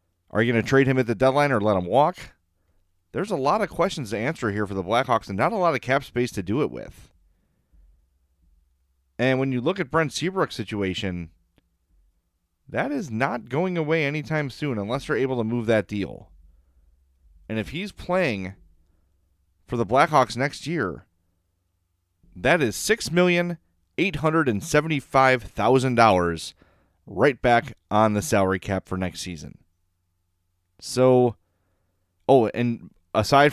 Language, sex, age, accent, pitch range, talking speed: English, male, 30-49, American, 90-130 Hz, 150 wpm